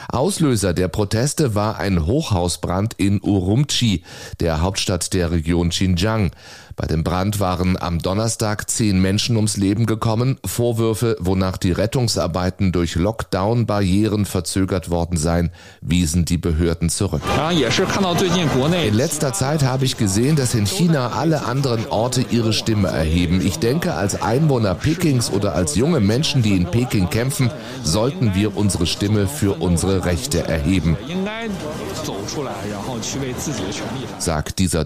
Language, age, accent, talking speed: German, 30-49, German, 130 wpm